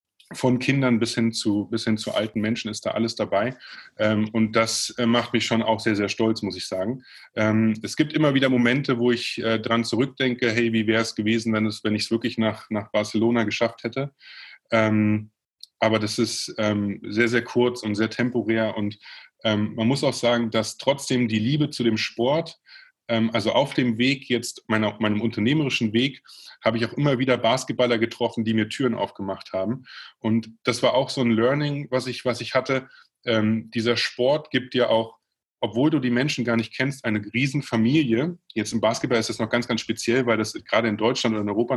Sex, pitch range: male, 110-130 Hz